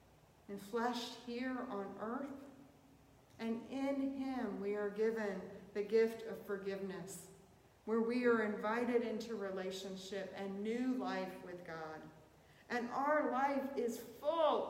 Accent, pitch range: American, 165-225 Hz